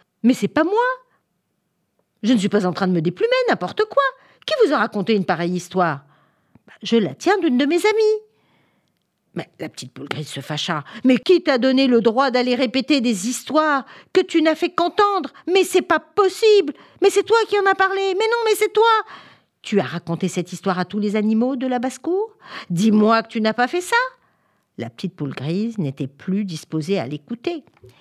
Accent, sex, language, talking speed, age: French, female, French, 205 wpm, 50-69